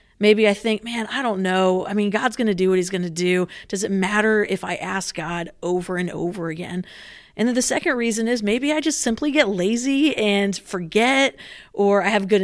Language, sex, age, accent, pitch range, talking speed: English, female, 40-59, American, 195-235 Hz, 225 wpm